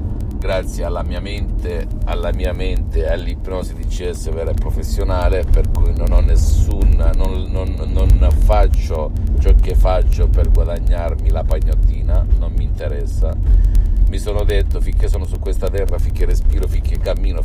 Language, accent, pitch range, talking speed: Italian, native, 75-90 Hz, 150 wpm